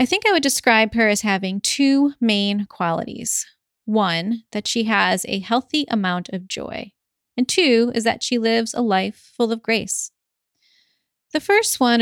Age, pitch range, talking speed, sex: 30-49, 195-250 Hz, 170 wpm, female